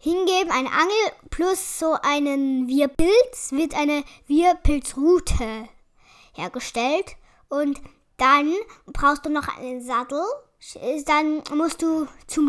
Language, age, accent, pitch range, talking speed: German, 10-29, German, 275-325 Hz, 105 wpm